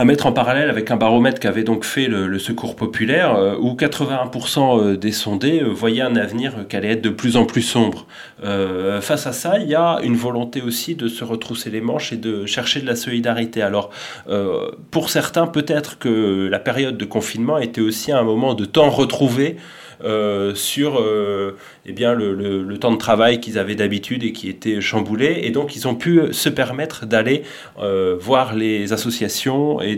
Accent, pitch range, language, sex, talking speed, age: French, 105-130 Hz, French, male, 200 wpm, 30-49